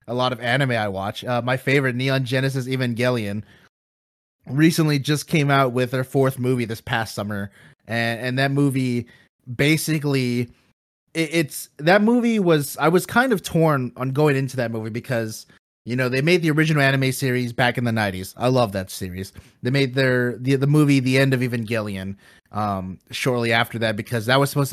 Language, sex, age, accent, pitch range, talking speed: English, male, 30-49, American, 120-135 Hz, 190 wpm